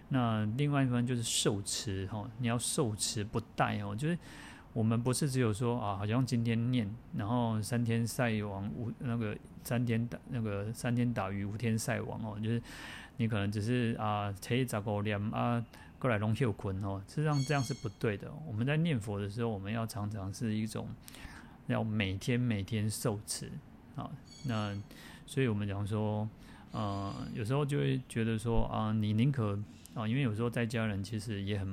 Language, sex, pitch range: Chinese, male, 105-120 Hz